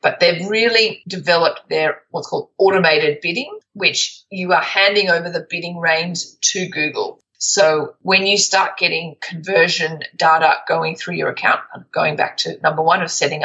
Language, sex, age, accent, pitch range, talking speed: English, female, 30-49, Australian, 160-195 Hz, 165 wpm